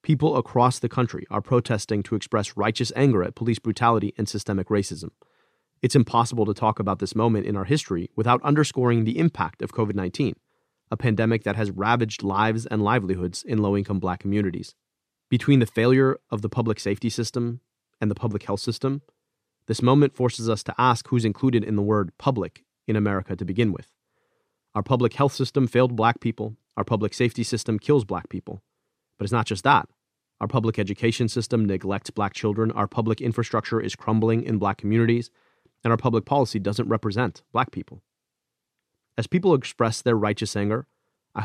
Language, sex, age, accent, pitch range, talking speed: English, male, 30-49, American, 105-125 Hz, 180 wpm